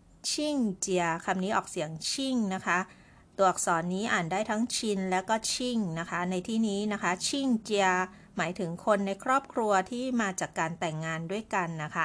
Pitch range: 170-220 Hz